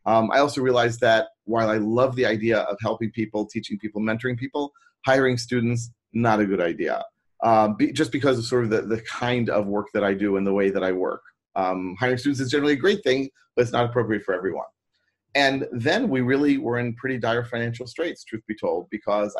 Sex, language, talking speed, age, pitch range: male, English, 220 wpm, 30-49, 105-130 Hz